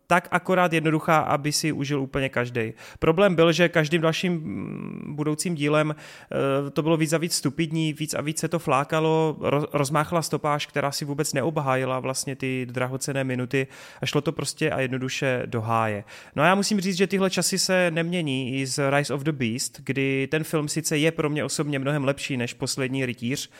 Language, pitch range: Czech, 130-155 Hz